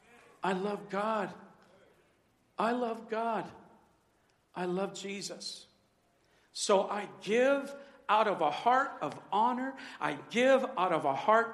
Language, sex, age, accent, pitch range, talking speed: English, male, 50-69, American, 180-260 Hz, 125 wpm